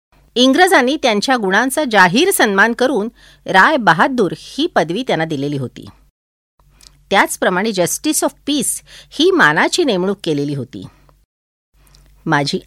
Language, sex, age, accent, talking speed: Marathi, female, 50-69, native, 110 wpm